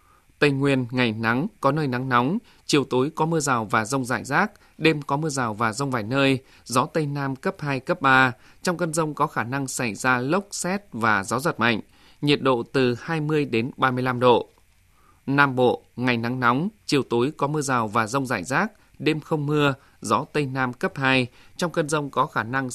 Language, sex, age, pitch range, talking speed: Vietnamese, male, 20-39, 125-150 Hz, 215 wpm